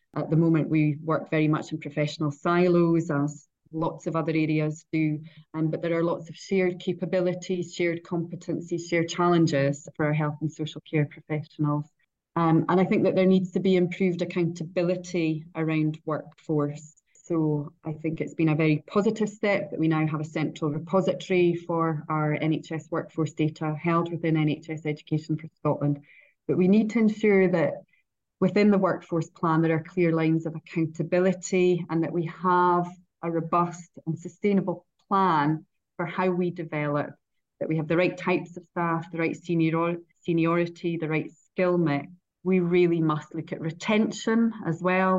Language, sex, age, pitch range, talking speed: English, female, 30-49, 155-180 Hz, 170 wpm